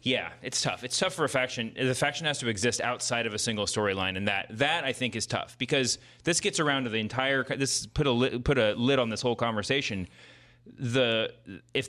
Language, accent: English, American